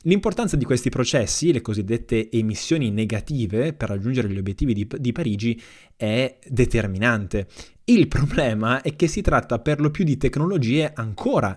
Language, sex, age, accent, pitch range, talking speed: Italian, male, 20-39, native, 110-140 Hz, 150 wpm